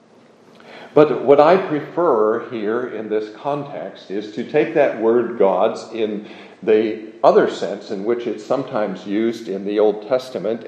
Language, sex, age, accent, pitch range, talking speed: English, male, 50-69, American, 110-135 Hz, 150 wpm